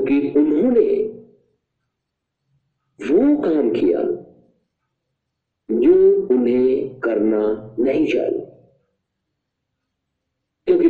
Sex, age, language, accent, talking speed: male, 50-69, Hindi, native, 60 wpm